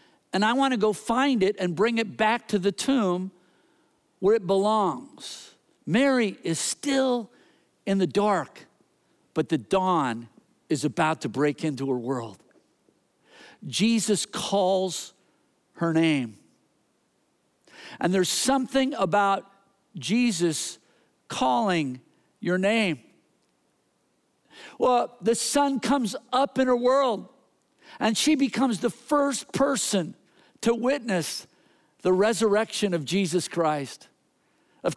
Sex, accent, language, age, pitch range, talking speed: male, American, English, 50-69, 180-250 Hz, 115 wpm